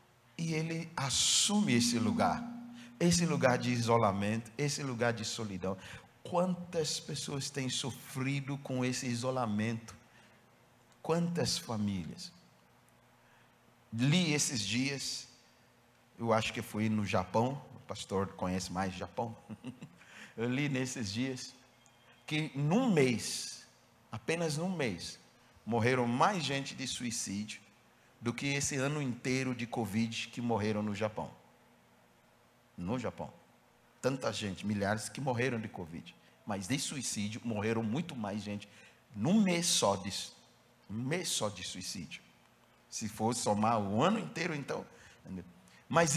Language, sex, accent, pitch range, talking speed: Portuguese, male, Brazilian, 110-145 Hz, 125 wpm